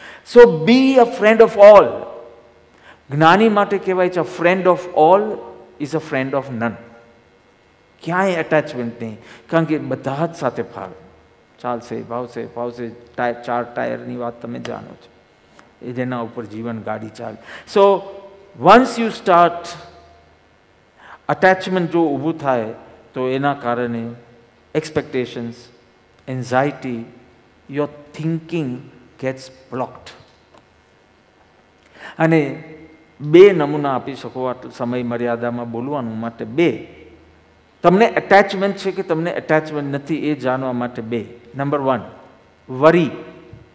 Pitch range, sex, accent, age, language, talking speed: 120-180 Hz, male, native, 50-69, Hindi, 110 wpm